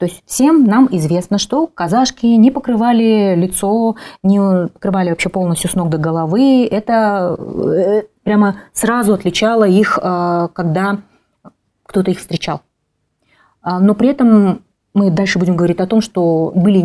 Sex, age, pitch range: female, 30-49, 175-225 Hz